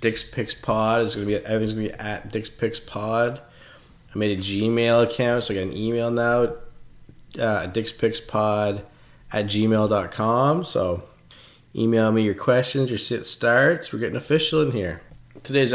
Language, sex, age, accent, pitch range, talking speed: English, male, 20-39, American, 100-120 Hz, 170 wpm